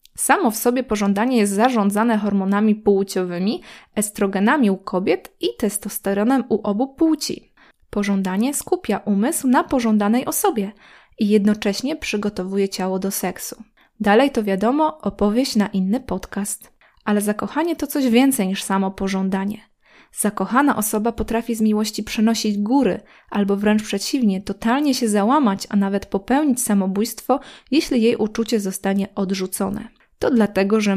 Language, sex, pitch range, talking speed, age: Polish, female, 200-235 Hz, 130 wpm, 20-39